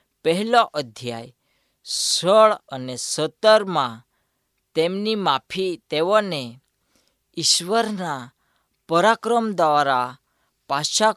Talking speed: 65 wpm